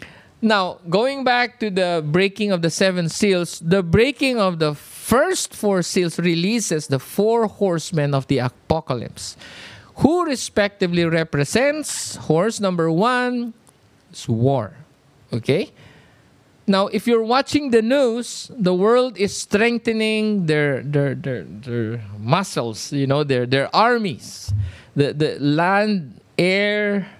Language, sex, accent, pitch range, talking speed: English, male, Filipino, 140-215 Hz, 125 wpm